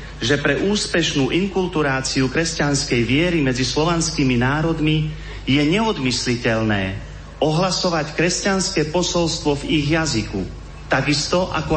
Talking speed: 95 wpm